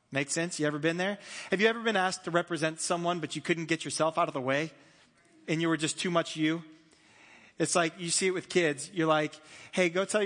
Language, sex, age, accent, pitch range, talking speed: English, male, 30-49, American, 165-220 Hz, 245 wpm